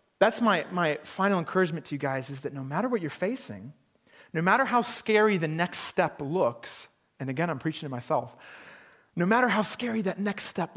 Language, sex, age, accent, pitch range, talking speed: English, male, 40-59, American, 135-215 Hz, 200 wpm